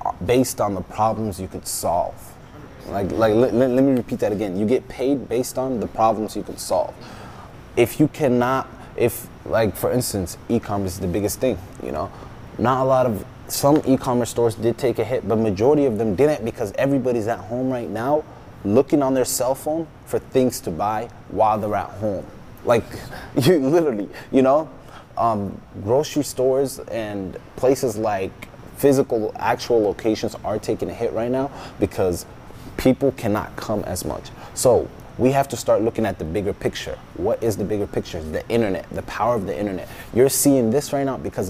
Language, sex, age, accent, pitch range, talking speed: English, male, 20-39, American, 105-130 Hz, 185 wpm